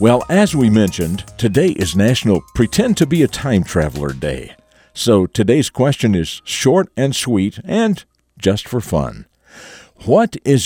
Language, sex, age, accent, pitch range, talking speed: English, male, 50-69, American, 90-130 Hz, 125 wpm